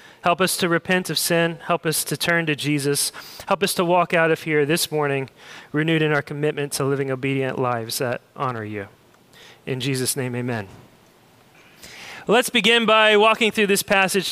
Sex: male